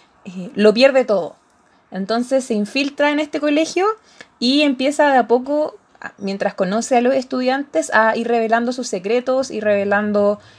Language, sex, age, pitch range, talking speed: Spanish, female, 20-39, 220-275 Hz, 145 wpm